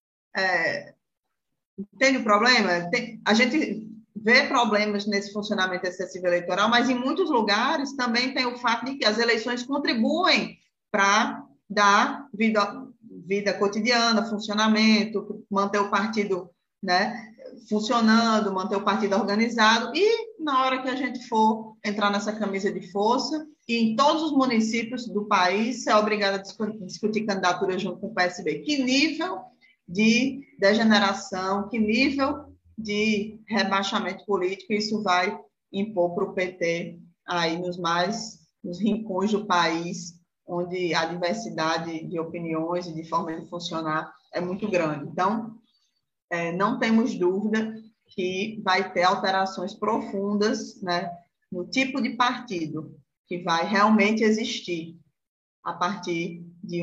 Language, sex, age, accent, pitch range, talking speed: Portuguese, female, 20-39, Brazilian, 180-230 Hz, 130 wpm